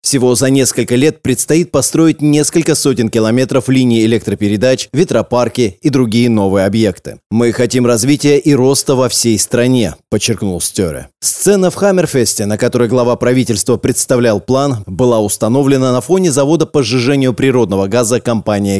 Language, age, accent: Russian, 20-39, native